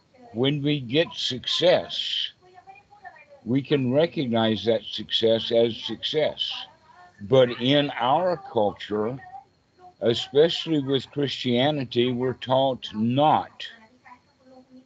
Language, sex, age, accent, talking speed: English, male, 60-79, American, 85 wpm